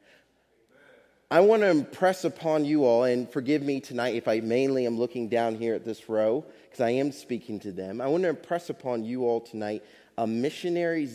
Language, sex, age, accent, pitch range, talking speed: English, male, 30-49, American, 125-175 Hz, 200 wpm